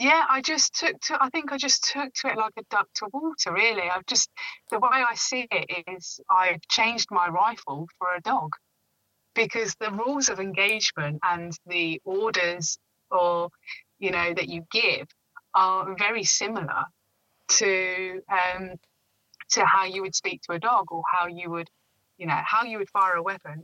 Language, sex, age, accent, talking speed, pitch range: English, female, 20-39, British, 185 wpm, 175-205 Hz